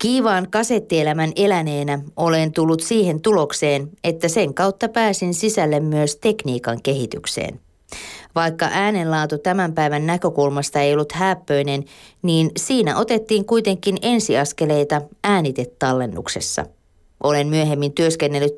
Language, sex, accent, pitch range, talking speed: Finnish, female, native, 145-190 Hz, 105 wpm